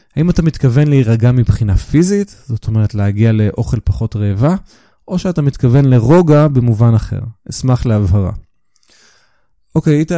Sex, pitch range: male, 110-145 Hz